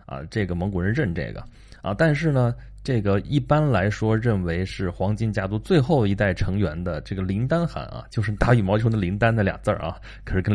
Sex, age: male, 20-39